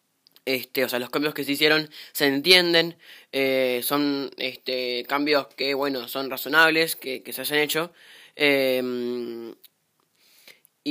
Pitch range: 130-150 Hz